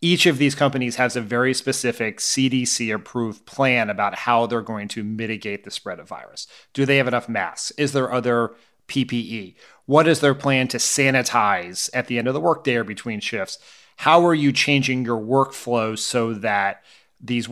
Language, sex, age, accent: English, male, 30-49, American